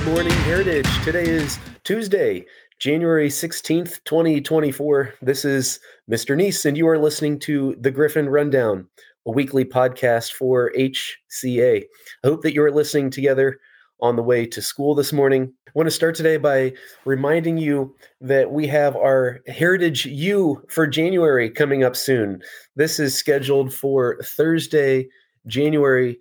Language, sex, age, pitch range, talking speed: English, male, 30-49, 125-150 Hz, 150 wpm